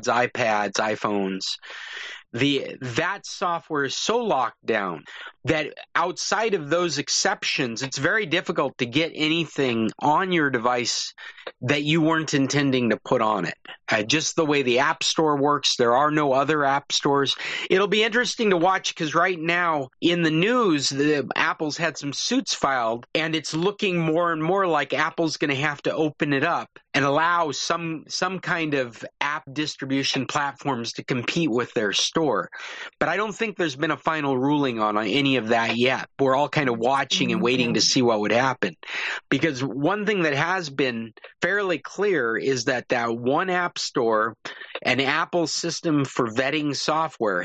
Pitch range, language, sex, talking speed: 130-170 Hz, English, male, 175 wpm